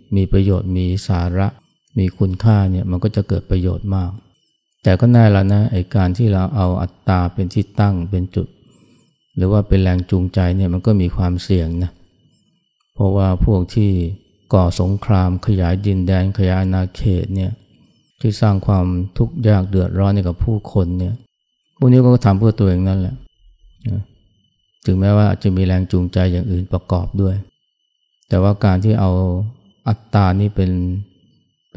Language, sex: Thai, male